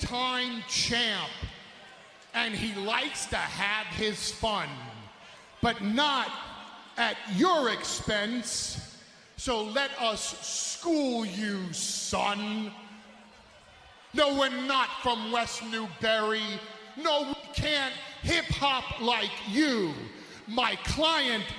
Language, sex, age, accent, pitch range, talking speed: English, male, 40-59, American, 235-320 Hz, 95 wpm